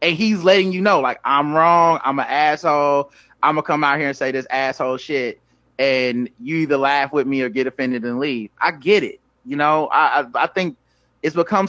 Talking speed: 220 wpm